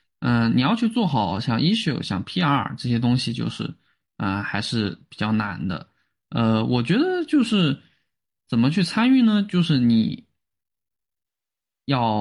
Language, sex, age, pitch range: Chinese, male, 20-39, 110-145 Hz